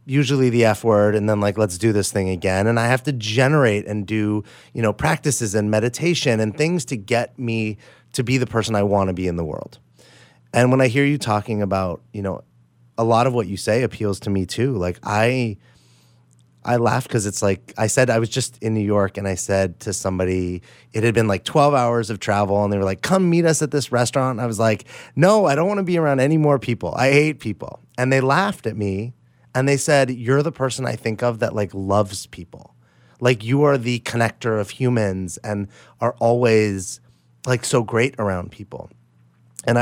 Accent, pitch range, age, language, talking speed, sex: American, 95-125 Hz, 30-49, English, 225 wpm, male